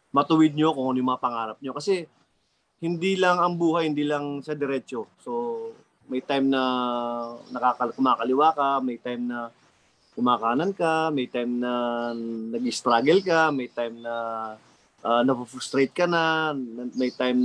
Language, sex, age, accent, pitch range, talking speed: Filipino, male, 20-39, native, 120-150 Hz, 145 wpm